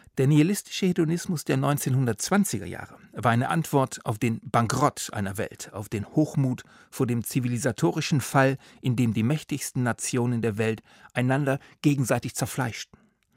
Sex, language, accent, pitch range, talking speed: male, German, German, 115-145 Hz, 140 wpm